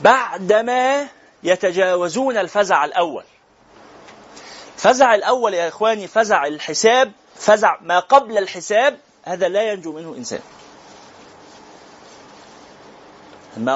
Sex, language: male, Arabic